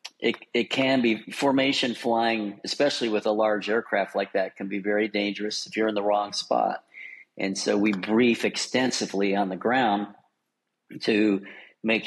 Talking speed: 165 wpm